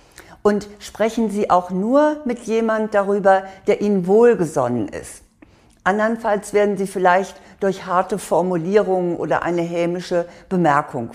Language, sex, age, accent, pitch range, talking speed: German, female, 60-79, German, 180-215 Hz, 125 wpm